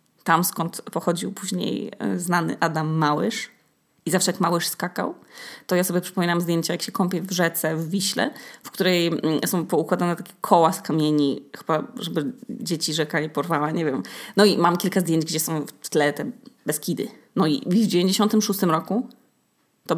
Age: 20-39